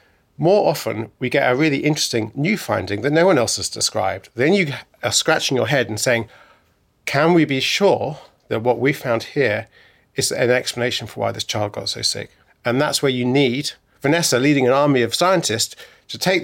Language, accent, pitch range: English, British, 115-160 Hz